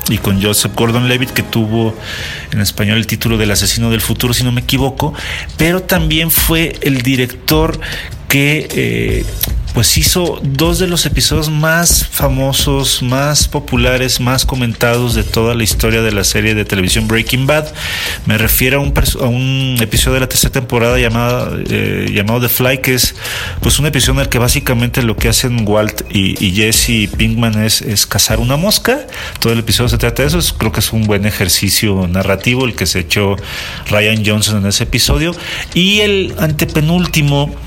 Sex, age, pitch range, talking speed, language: male, 40-59, 100-130 Hz, 180 wpm, Spanish